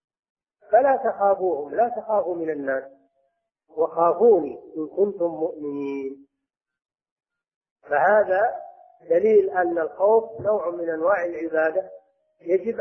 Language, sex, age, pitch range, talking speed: Arabic, male, 50-69, 160-250 Hz, 90 wpm